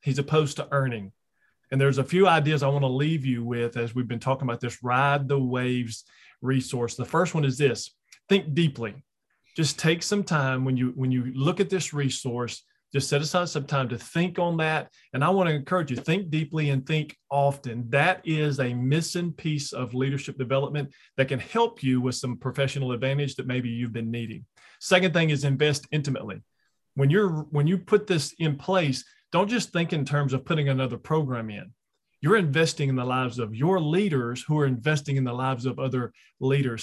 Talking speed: 205 wpm